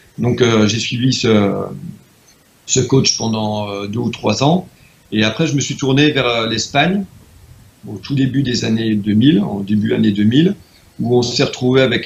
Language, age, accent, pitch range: French, 40-59, French, 105-130 Hz